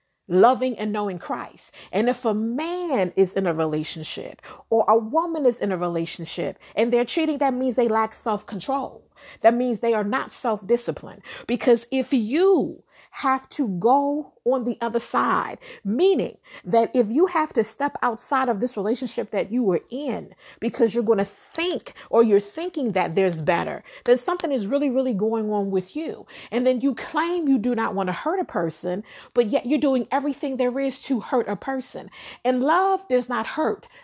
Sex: female